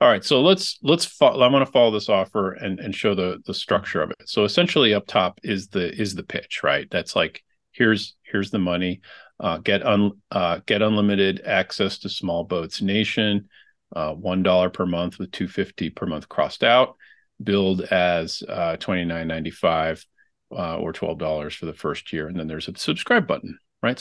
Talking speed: 195 wpm